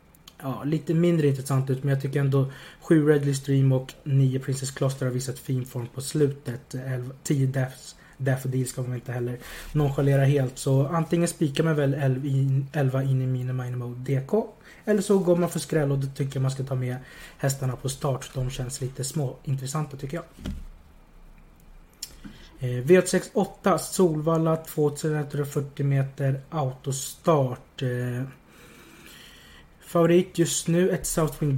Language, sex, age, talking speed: Swedish, male, 30-49, 150 wpm